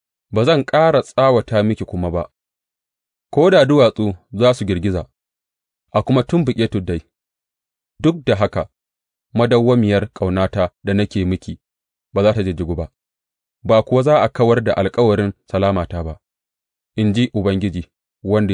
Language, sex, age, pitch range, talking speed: English, male, 30-49, 80-120 Hz, 95 wpm